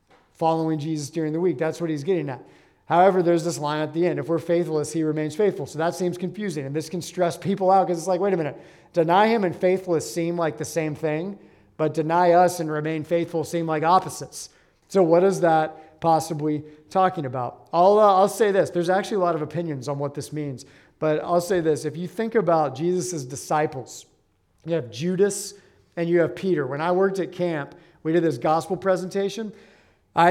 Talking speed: 210 wpm